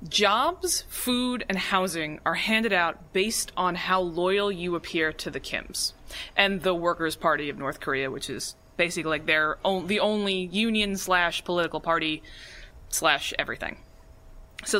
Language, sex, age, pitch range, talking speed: English, female, 20-39, 165-210 Hz, 155 wpm